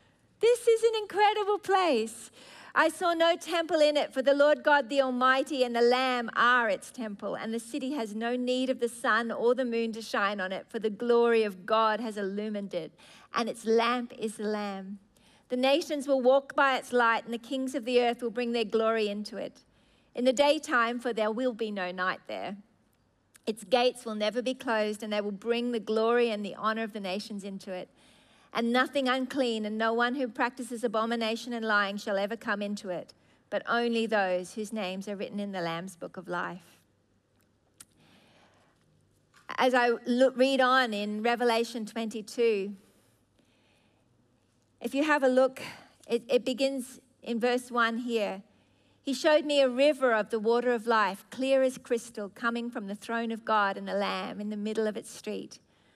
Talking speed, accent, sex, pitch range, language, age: 190 wpm, Australian, female, 210-255 Hz, English, 40-59